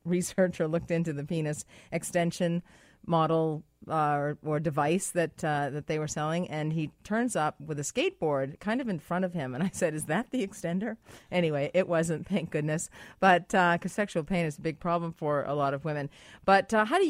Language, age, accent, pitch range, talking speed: English, 40-59, American, 155-190 Hz, 210 wpm